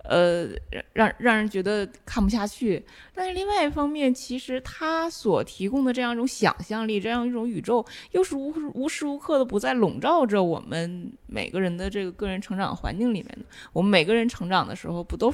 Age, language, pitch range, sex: 20-39, Chinese, 195-285 Hz, female